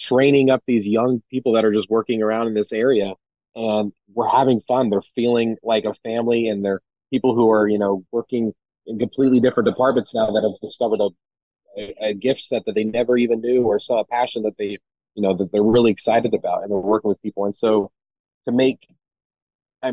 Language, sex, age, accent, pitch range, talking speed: English, male, 30-49, American, 100-120 Hz, 210 wpm